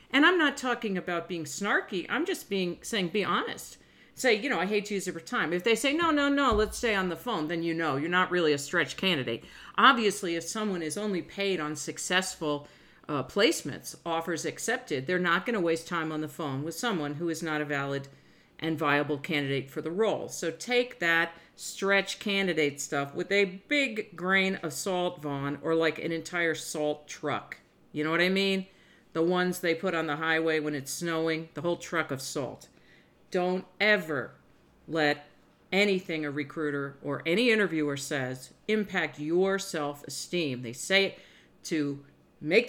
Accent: American